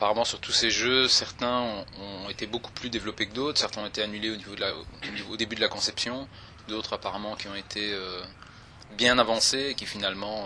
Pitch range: 100-125 Hz